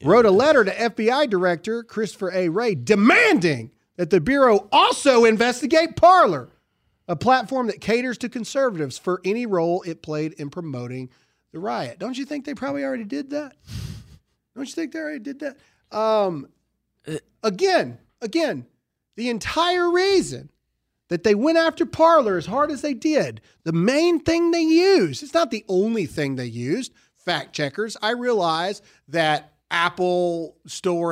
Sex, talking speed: male, 155 wpm